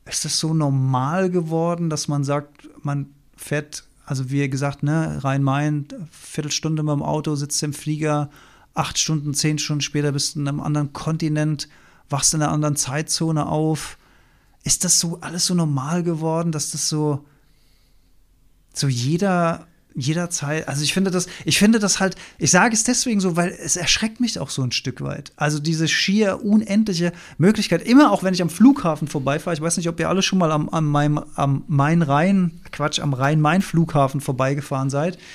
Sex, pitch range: male, 145-185 Hz